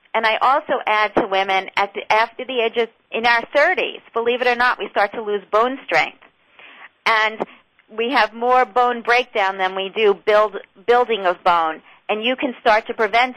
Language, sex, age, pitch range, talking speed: English, female, 50-69, 200-245 Hz, 195 wpm